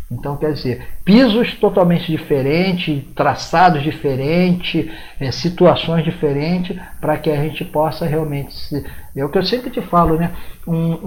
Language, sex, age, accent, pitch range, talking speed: Portuguese, male, 50-69, Brazilian, 130-170 Hz, 150 wpm